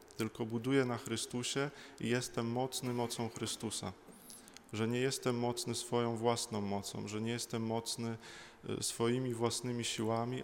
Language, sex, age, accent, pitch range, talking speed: Polish, male, 20-39, native, 110-125 Hz, 130 wpm